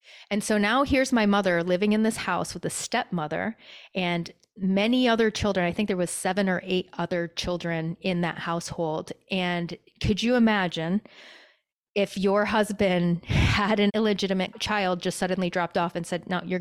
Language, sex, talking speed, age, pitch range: English, female, 175 wpm, 30-49, 175-205 Hz